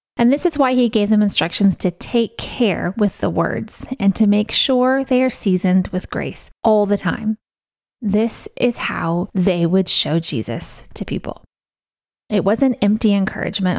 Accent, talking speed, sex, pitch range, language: American, 170 wpm, female, 190-240 Hz, English